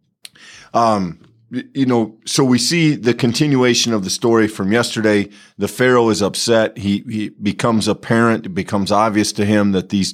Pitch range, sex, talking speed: 100-125 Hz, male, 165 wpm